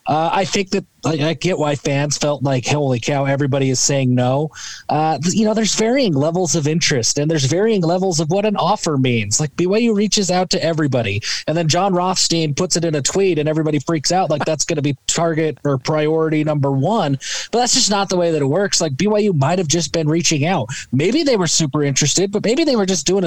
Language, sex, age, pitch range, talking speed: English, male, 20-39, 140-185 Hz, 230 wpm